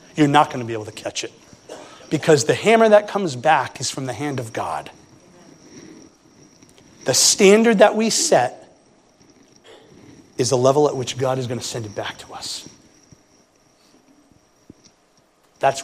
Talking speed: 155 wpm